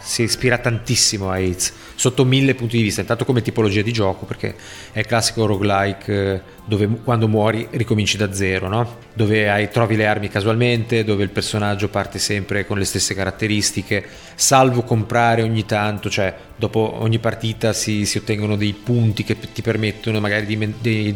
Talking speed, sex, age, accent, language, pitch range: 165 wpm, male, 30-49, native, Italian, 105-120 Hz